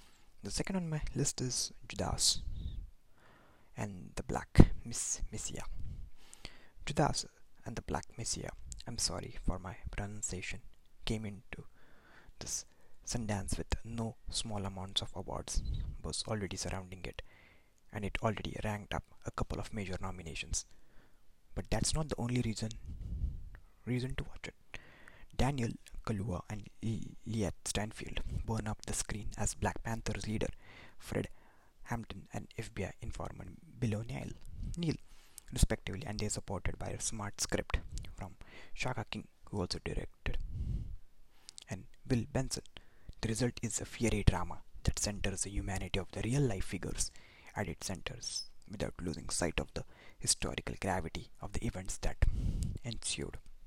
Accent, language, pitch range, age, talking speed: Indian, English, 90-110 Hz, 20-39, 140 wpm